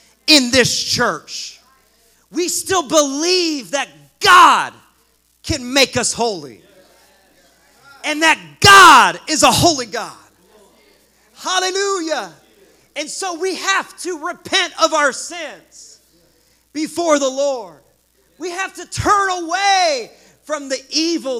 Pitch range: 255-360 Hz